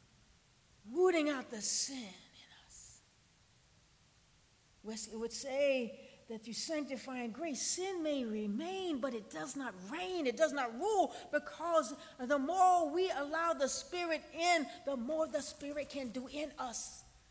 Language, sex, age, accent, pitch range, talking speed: English, female, 40-59, American, 290-405 Hz, 140 wpm